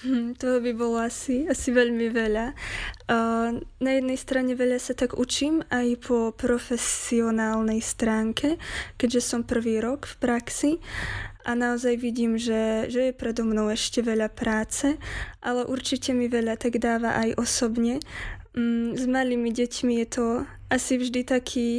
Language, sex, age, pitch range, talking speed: Slovak, female, 20-39, 230-250 Hz, 150 wpm